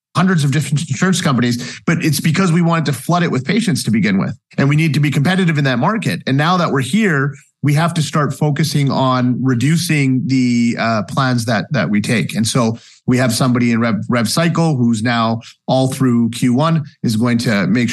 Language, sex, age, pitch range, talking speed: English, male, 40-59, 130-180 Hz, 215 wpm